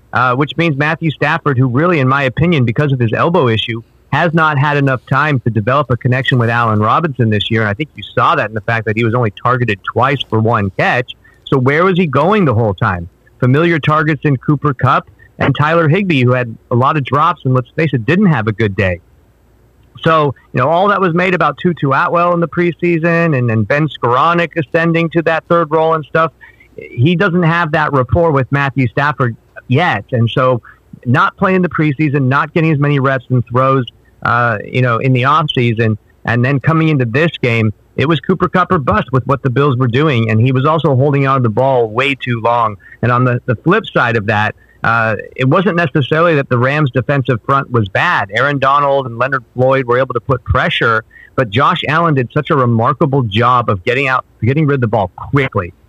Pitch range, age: 120-160 Hz, 50-69